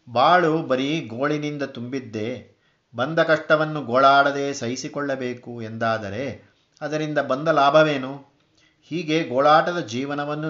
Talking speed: 85 wpm